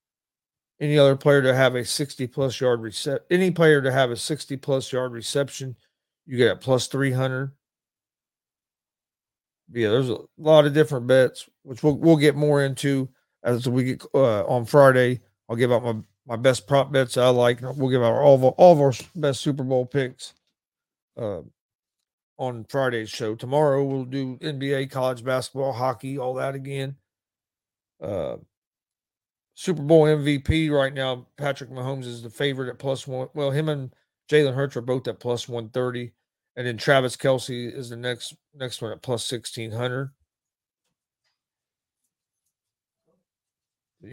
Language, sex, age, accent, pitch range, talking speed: English, male, 40-59, American, 125-140 Hz, 160 wpm